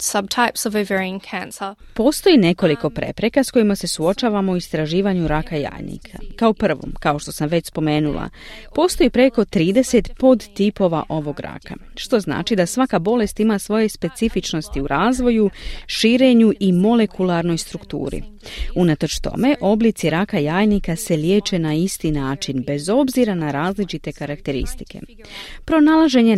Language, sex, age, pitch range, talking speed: Croatian, female, 30-49, 150-220 Hz, 130 wpm